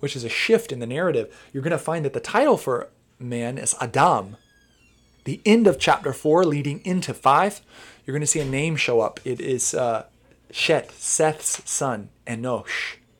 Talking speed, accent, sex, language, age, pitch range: 175 wpm, American, male, English, 20-39, 110-135 Hz